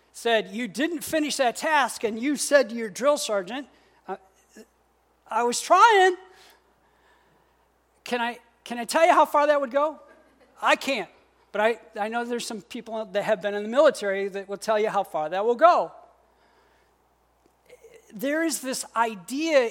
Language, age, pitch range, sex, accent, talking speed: English, 50-69, 205-275 Hz, male, American, 165 wpm